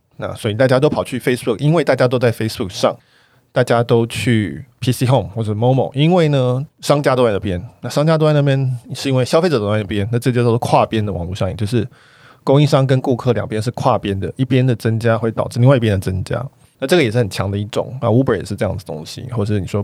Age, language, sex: 20-39, Chinese, male